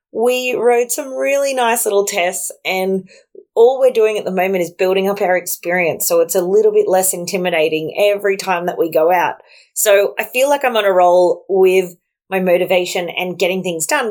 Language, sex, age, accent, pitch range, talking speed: English, female, 20-39, Australian, 180-230 Hz, 200 wpm